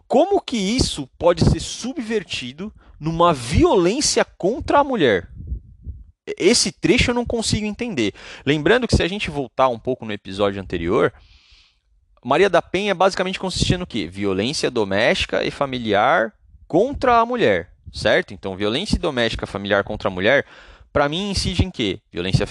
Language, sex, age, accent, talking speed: Portuguese, male, 30-49, Brazilian, 150 wpm